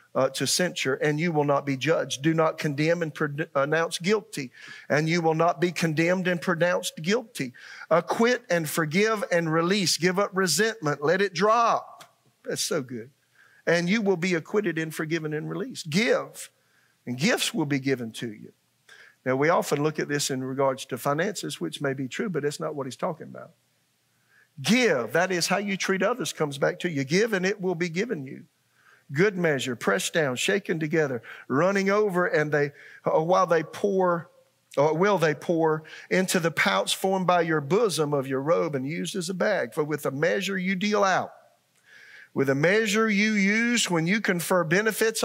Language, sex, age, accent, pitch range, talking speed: English, male, 50-69, American, 150-195 Hz, 190 wpm